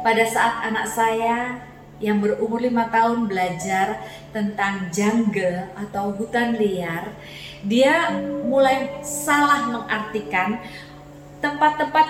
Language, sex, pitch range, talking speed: Indonesian, female, 200-270 Hz, 95 wpm